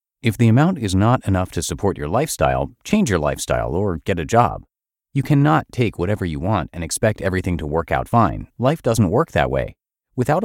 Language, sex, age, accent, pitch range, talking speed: English, male, 40-59, American, 85-120 Hz, 205 wpm